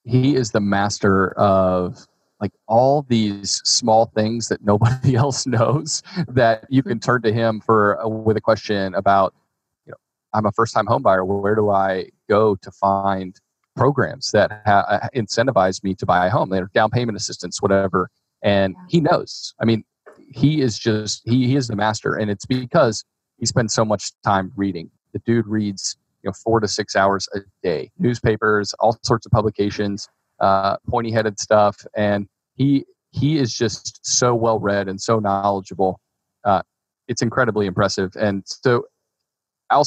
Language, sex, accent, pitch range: English, male, American, 100-120 Hz